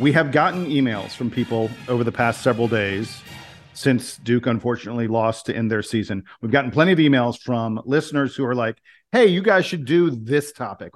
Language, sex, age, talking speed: English, male, 50-69, 195 wpm